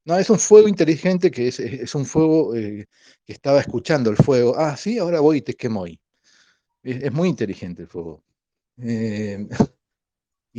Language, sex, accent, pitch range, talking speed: Spanish, male, Argentinian, 105-140 Hz, 175 wpm